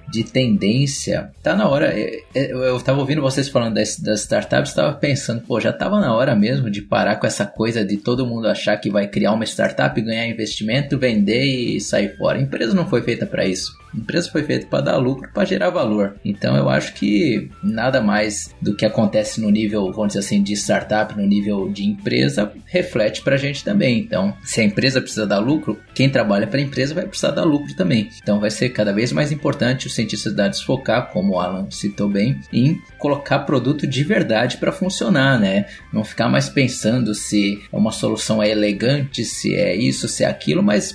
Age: 20-39